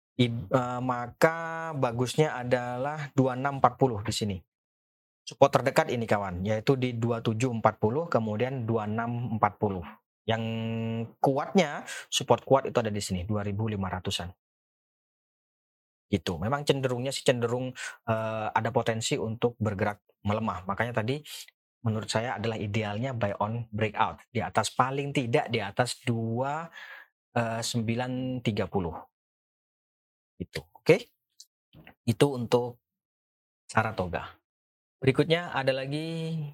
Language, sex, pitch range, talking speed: Indonesian, male, 110-140 Hz, 105 wpm